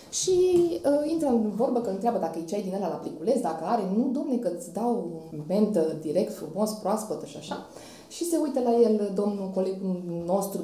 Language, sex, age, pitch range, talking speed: Romanian, female, 20-39, 185-245 Hz, 185 wpm